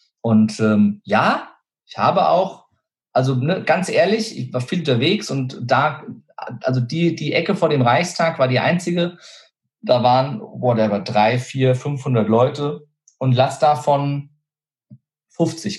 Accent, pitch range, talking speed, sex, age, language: German, 115-150 Hz, 150 wpm, male, 40-59, German